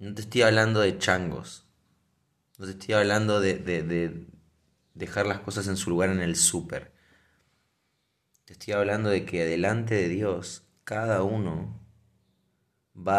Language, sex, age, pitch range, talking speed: Spanish, male, 20-39, 95-115 Hz, 150 wpm